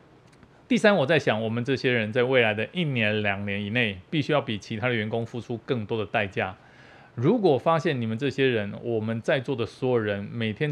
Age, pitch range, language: 20-39, 110-135 Hz, Chinese